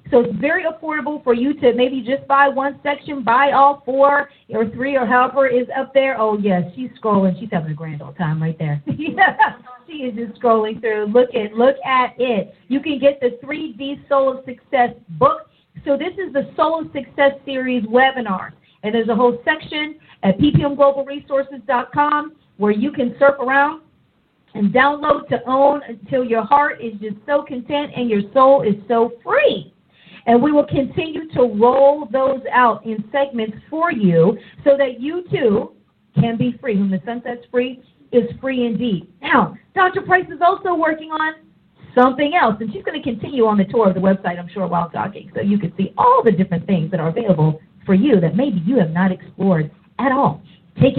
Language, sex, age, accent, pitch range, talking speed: English, female, 40-59, American, 210-280 Hz, 195 wpm